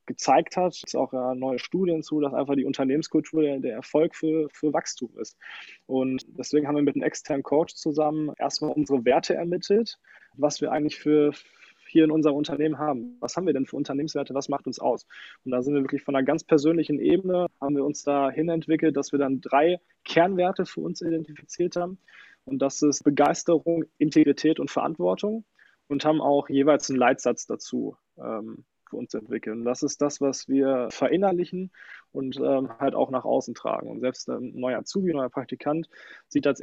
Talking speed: 190 wpm